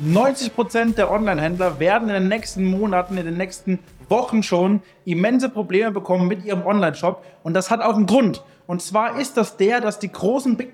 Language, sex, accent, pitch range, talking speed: German, male, German, 190-230 Hz, 190 wpm